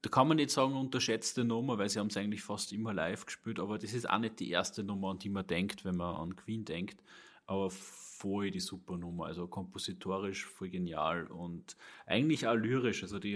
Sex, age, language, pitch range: male, 30-49, German, 95-110 Hz